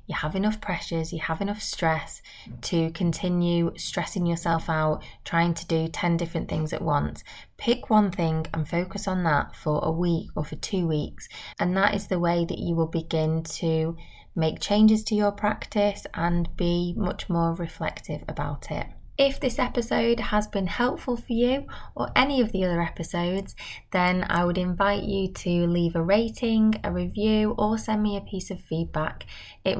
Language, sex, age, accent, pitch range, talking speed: English, female, 20-39, British, 170-205 Hz, 180 wpm